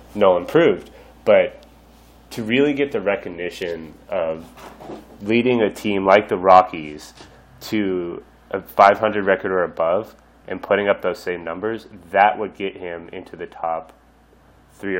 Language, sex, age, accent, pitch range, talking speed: English, male, 30-49, American, 90-110 Hz, 140 wpm